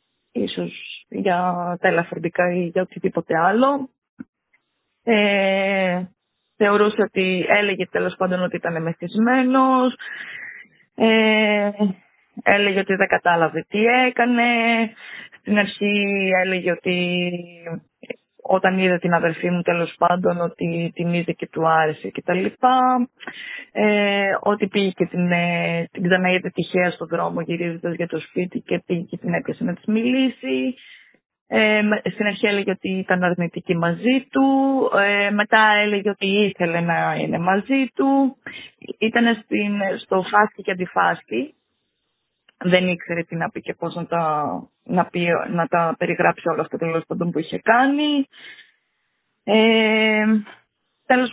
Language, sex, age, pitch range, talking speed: Greek, female, 20-39, 175-210 Hz, 120 wpm